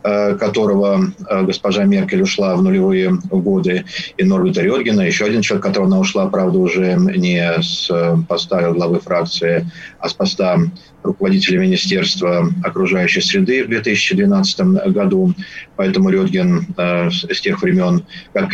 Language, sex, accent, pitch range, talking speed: Russian, male, native, 180-195 Hz, 125 wpm